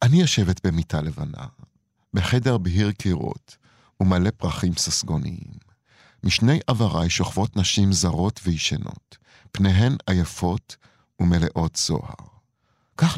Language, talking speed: Hebrew, 95 wpm